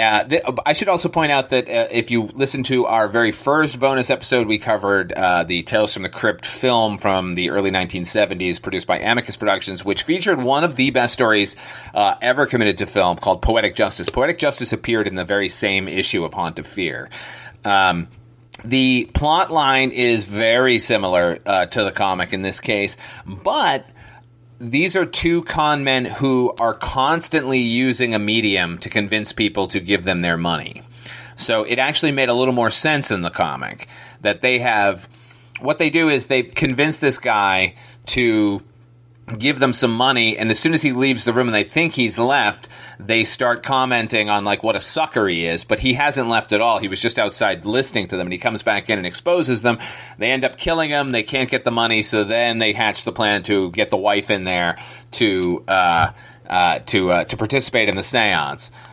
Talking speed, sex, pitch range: 205 wpm, male, 105-130 Hz